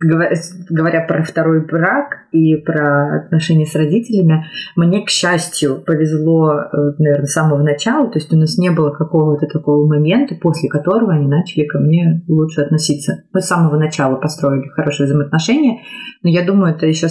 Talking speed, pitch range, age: 160 wpm, 145-175 Hz, 30-49